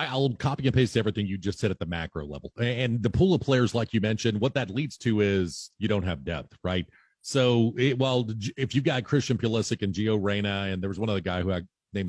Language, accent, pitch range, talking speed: English, American, 105-135 Hz, 250 wpm